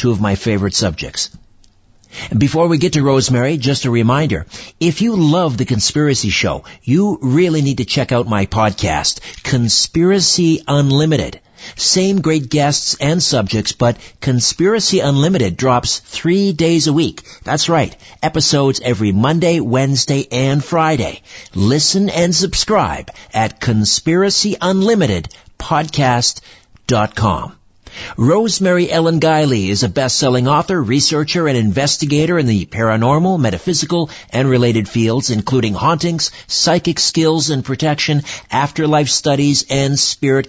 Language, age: English, 50-69